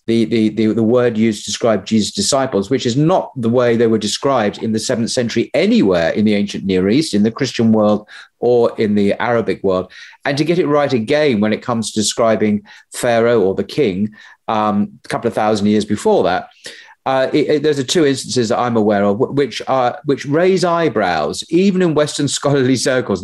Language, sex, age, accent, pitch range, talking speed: English, male, 40-59, British, 105-130 Hz, 200 wpm